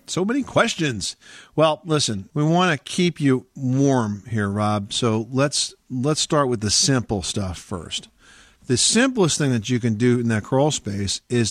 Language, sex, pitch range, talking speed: English, male, 105-130 Hz, 175 wpm